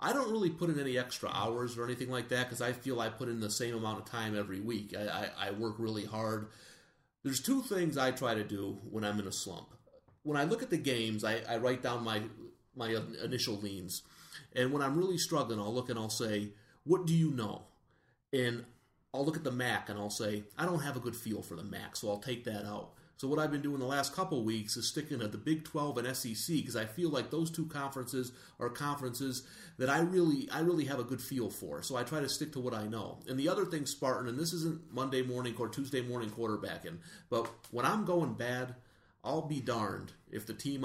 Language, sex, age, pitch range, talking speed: English, male, 30-49, 110-145 Hz, 240 wpm